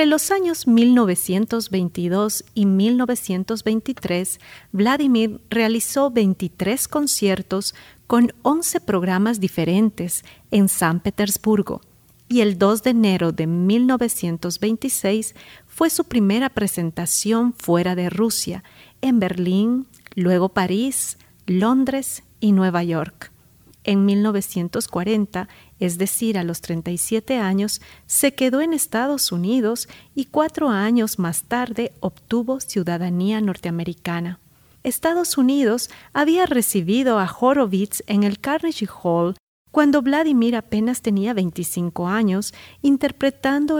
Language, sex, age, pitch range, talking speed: Spanish, female, 40-59, 185-245 Hz, 105 wpm